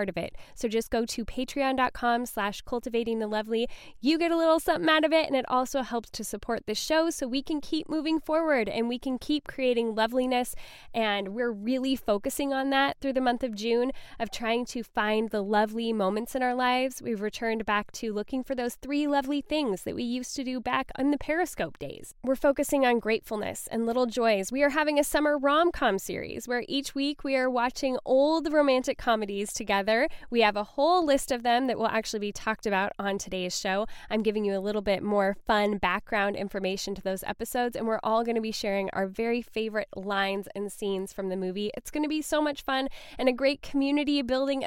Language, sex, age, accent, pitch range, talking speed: English, female, 10-29, American, 210-270 Hz, 215 wpm